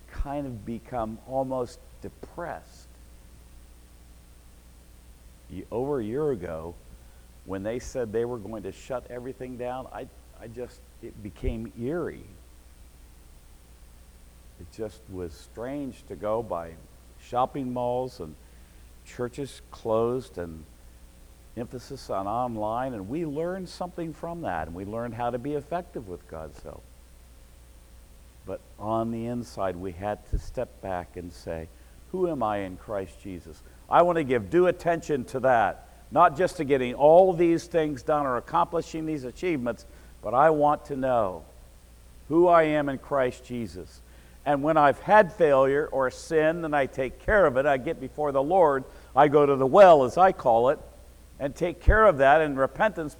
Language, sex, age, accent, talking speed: English, male, 50-69, American, 155 wpm